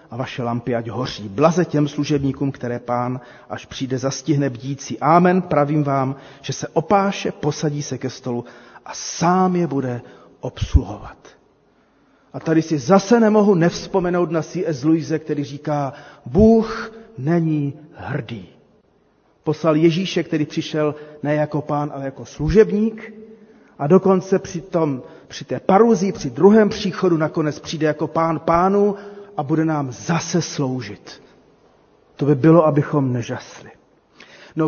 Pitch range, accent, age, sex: 145-195 Hz, native, 40-59, male